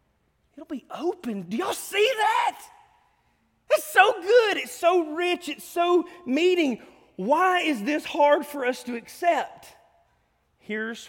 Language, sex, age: English, male, 40-59